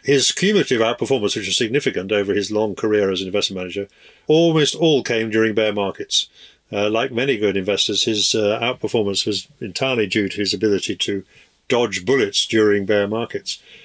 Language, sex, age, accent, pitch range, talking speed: English, male, 50-69, British, 95-110 Hz, 175 wpm